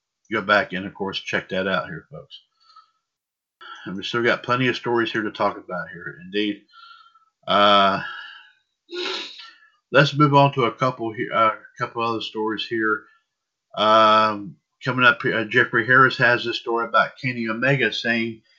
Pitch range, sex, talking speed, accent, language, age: 110-150 Hz, male, 160 wpm, American, English, 50-69